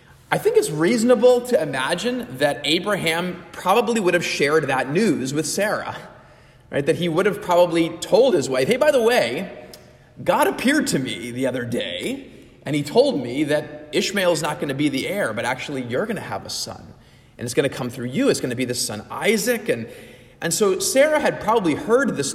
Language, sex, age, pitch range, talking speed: English, male, 30-49, 130-195 Hz, 210 wpm